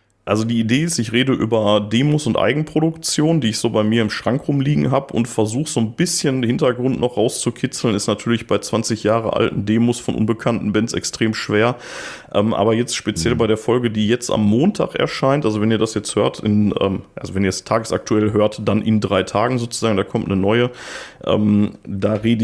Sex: male